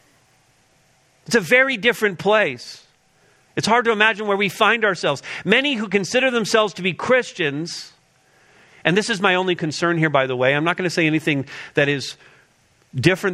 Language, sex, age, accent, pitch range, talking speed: English, male, 40-59, American, 125-175 Hz, 175 wpm